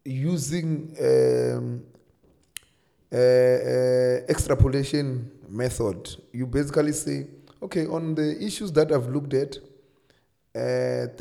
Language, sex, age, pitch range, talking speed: English, male, 30-49, 120-150 Hz, 95 wpm